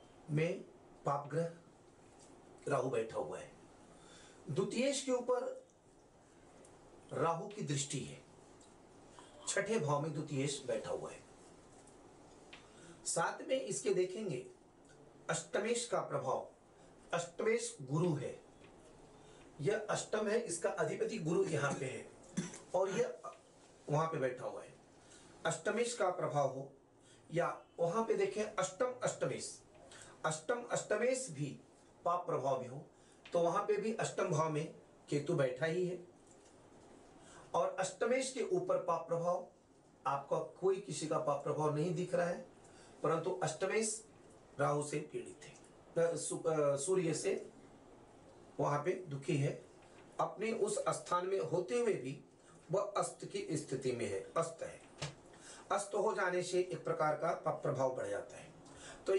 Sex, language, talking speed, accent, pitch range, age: male, Hindi, 100 wpm, native, 155-215 Hz, 40-59